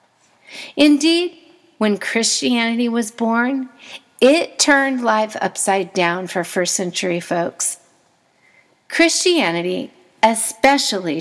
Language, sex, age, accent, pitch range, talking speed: English, female, 50-69, American, 195-270 Hz, 85 wpm